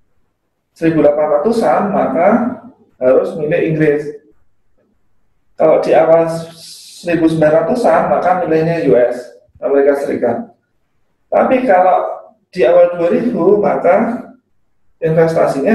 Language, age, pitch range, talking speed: Indonesian, 20-39, 155-220 Hz, 80 wpm